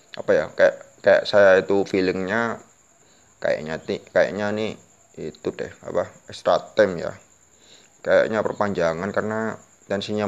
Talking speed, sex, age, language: 115 wpm, male, 20-39, Indonesian